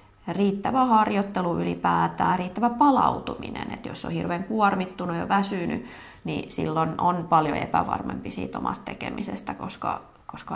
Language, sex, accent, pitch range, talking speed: Finnish, female, native, 160-205 Hz, 125 wpm